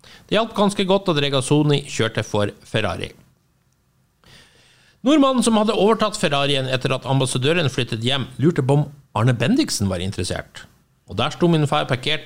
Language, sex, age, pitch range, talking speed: English, male, 50-69, 115-165 Hz, 150 wpm